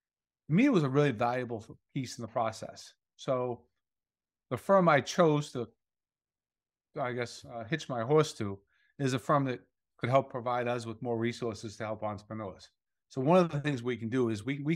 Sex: male